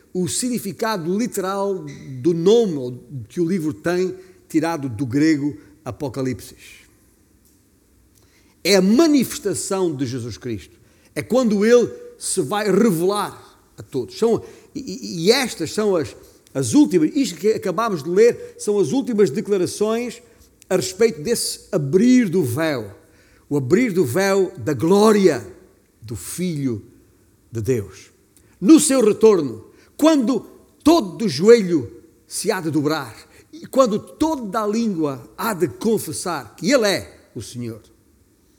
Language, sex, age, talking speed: Portuguese, male, 50-69, 130 wpm